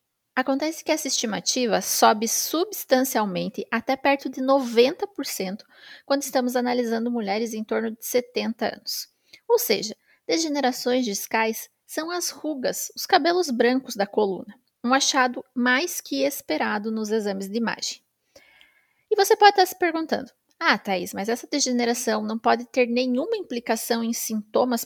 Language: Portuguese